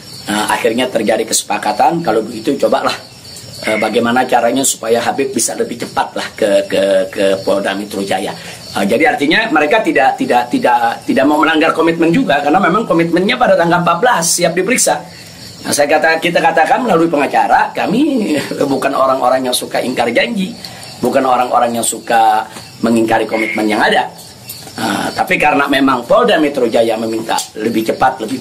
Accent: native